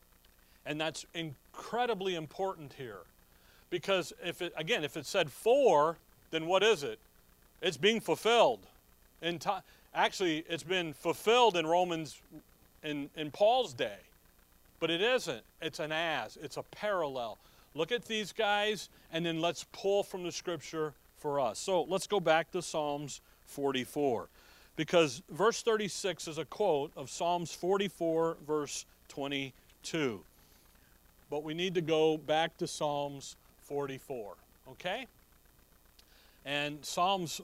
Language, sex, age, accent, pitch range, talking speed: English, male, 40-59, American, 145-190 Hz, 135 wpm